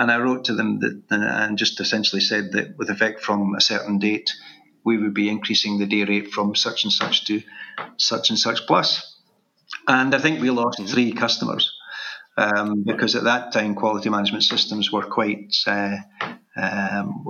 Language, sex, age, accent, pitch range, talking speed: English, male, 40-59, British, 105-120 Hz, 180 wpm